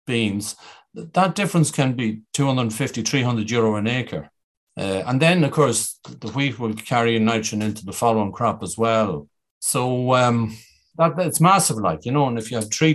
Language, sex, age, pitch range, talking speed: English, male, 40-59, 110-140 Hz, 180 wpm